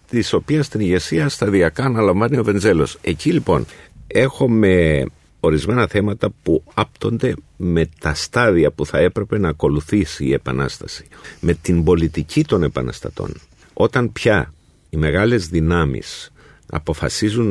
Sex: male